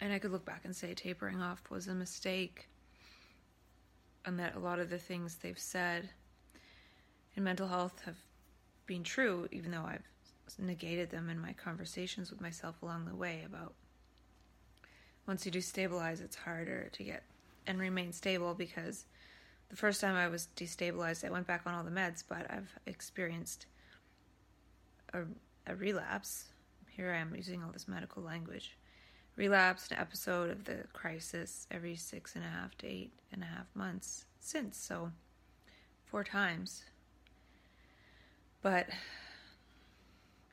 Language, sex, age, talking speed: English, female, 20-39, 150 wpm